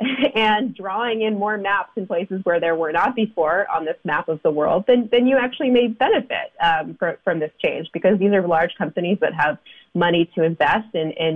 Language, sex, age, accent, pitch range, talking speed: English, female, 20-39, American, 165-215 Hz, 215 wpm